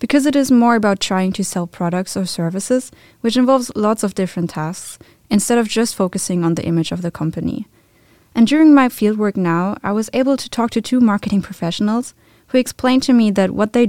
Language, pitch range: English, 180-235 Hz